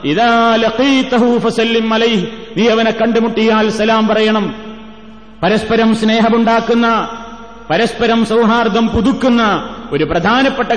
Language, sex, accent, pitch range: Malayalam, male, native, 220-235 Hz